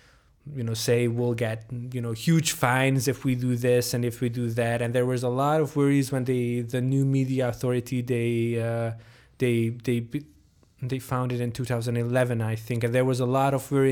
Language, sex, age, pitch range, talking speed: English, male, 20-39, 115-140 Hz, 205 wpm